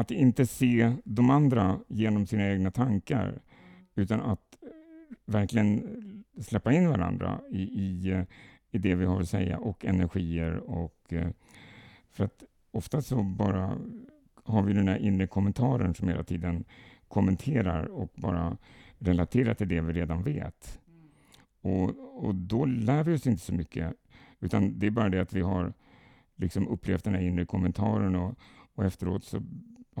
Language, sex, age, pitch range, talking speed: Swedish, male, 60-79, 90-115 Hz, 150 wpm